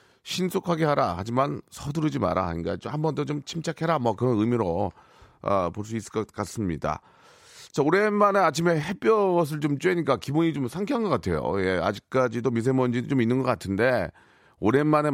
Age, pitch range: 40-59, 100-140 Hz